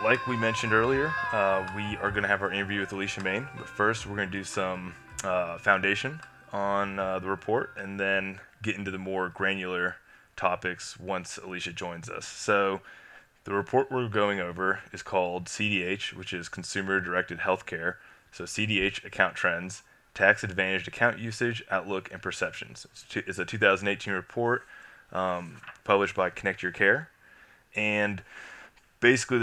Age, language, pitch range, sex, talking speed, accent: 20-39, English, 95-105 Hz, male, 155 wpm, American